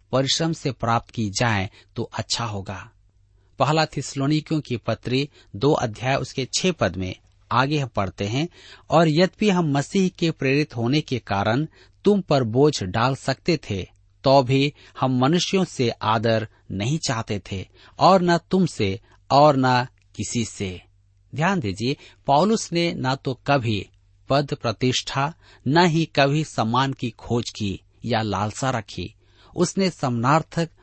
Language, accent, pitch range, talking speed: Hindi, native, 105-145 Hz, 145 wpm